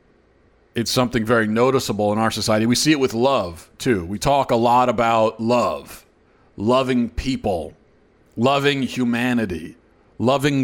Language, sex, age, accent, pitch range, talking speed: English, male, 40-59, American, 115-160 Hz, 135 wpm